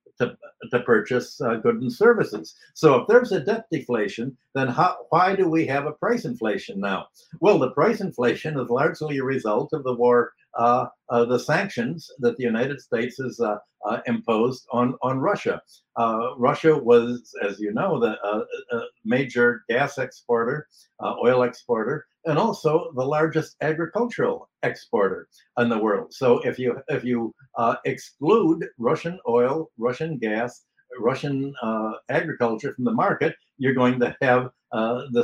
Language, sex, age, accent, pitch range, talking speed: English, male, 60-79, American, 120-170 Hz, 165 wpm